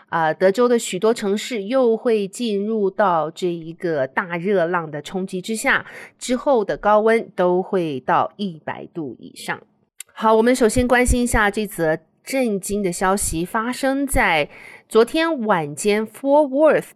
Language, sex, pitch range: Chinese, female, 180-240 Hz